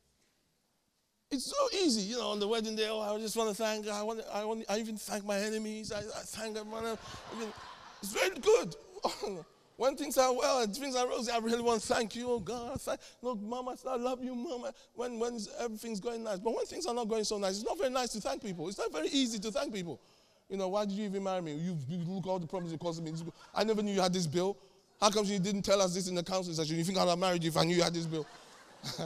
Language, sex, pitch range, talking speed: English, male, 185-235 Hz, 270 wpm